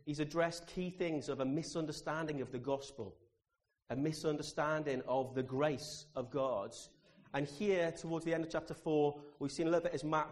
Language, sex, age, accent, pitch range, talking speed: English, male, 30-49, British, 125-155 Hz, 185 wpm